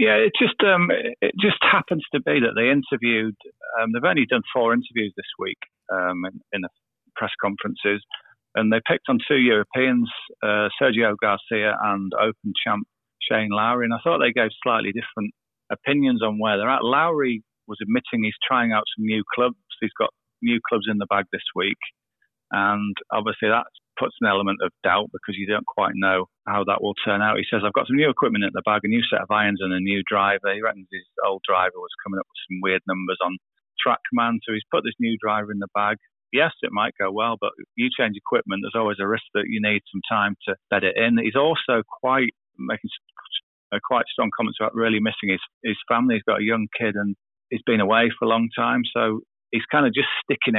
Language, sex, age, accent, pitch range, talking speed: English, male, 40-59, British, 100-115 Hz, 220 wpm